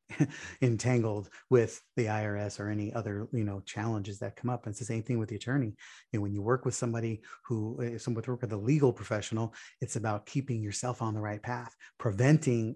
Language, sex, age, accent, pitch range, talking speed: English, male, 30-49, American, 105-125 Hz, 220 wpm